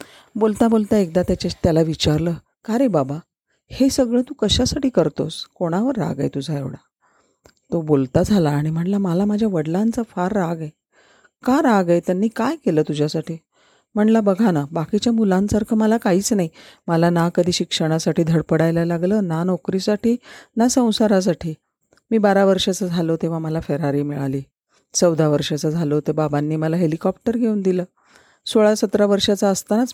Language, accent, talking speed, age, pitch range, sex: Marathi, native, 150 wpm, 40-59, 160-210 Hz, female